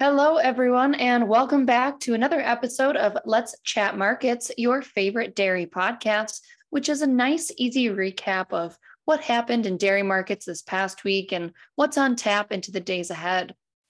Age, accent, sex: 20-39, American, female